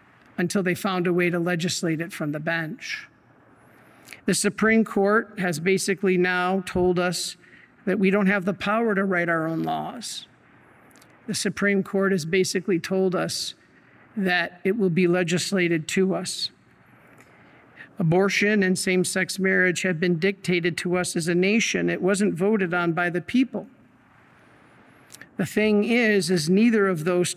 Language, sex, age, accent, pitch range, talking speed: English, male, 50-69, American, 170-195 Hz, 155 wpm